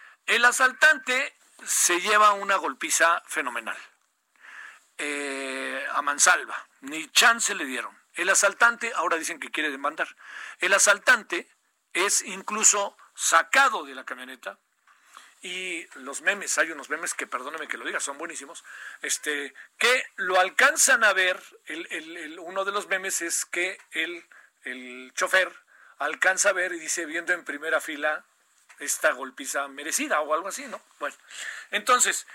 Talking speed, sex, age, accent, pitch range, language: 145 wpm, male, 50-69, Mexican, 185-255 Hz, Spanish